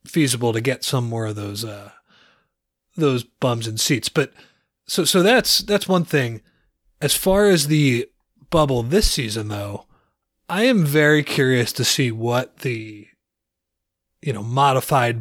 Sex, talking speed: male, 150 wpm